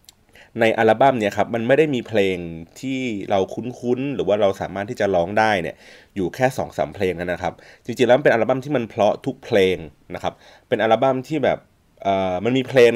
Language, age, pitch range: Thai, 20-39, 95-125 Hz